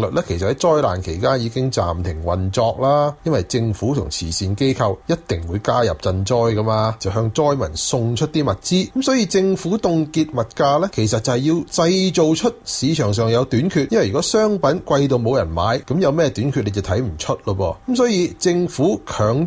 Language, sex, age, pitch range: Chinese, male, 30-49, 110-160 Hz